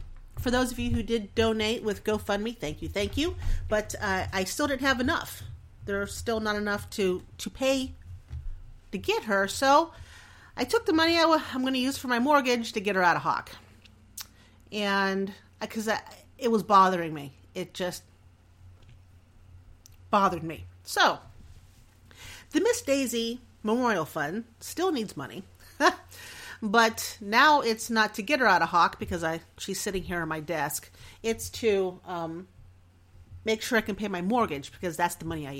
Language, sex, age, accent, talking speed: English, female, 40-59, American, 170 wpm